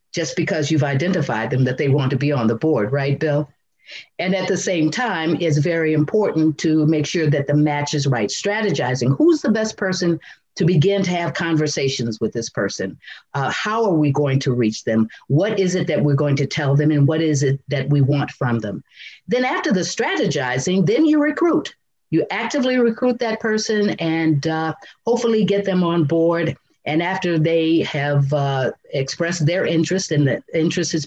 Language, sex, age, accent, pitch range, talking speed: English, female, 50-69, American, 140-175 Hz, 195 wpm